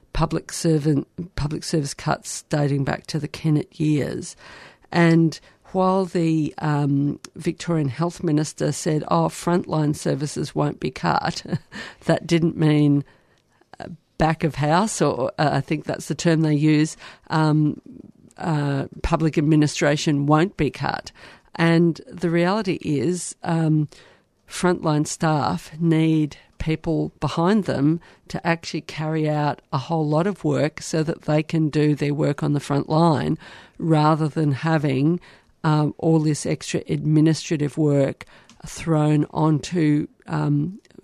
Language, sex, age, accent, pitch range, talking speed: English, female, 50-69, Australian, 150-170 Hz, 130 wpm